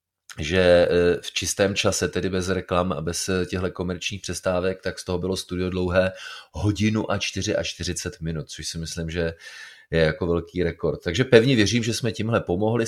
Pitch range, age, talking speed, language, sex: 85-100 Hz, 30-49, 180 wpm, Czech, male